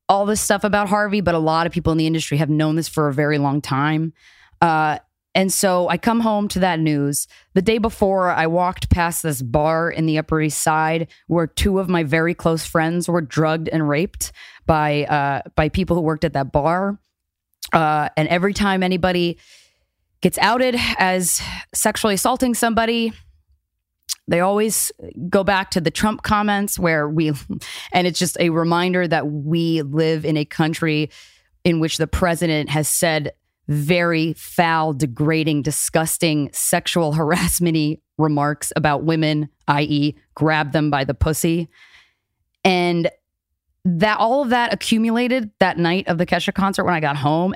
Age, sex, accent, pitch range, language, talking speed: 20-39, female, American, 155-185 Hz, English, 165 wpm